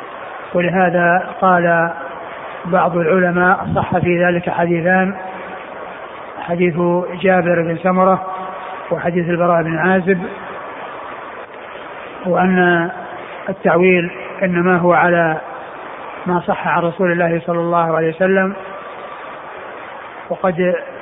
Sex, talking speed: male, 90 wpm